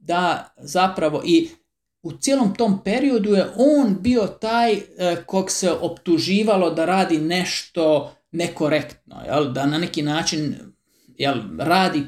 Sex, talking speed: male, 115 wpm